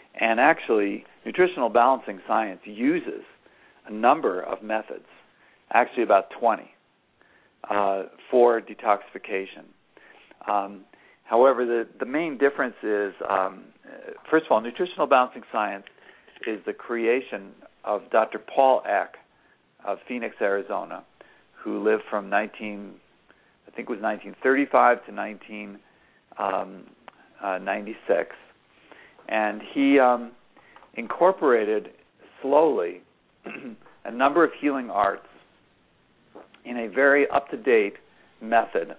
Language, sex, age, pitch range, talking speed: English, male, 50-69, 105-140 Hz, 105 wpm